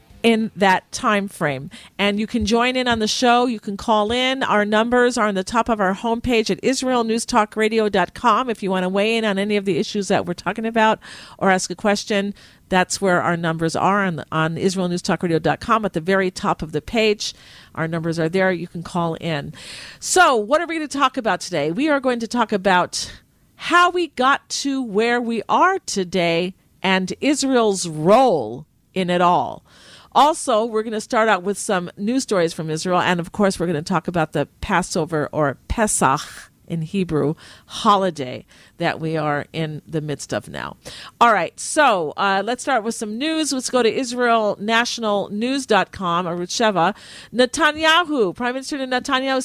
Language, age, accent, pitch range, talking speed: English, 50-69, American, 180-245 Hz, 190 wpm